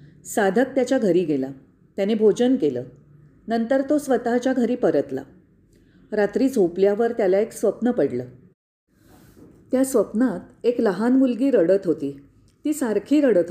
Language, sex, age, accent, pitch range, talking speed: Marathi, female, 40-59, native, 165-245 Hz, 125 wpm